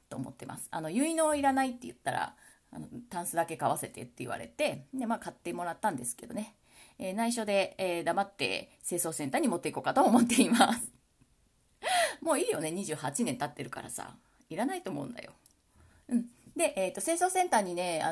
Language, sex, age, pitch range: Japanese, female, 30-49, 185-290 Hz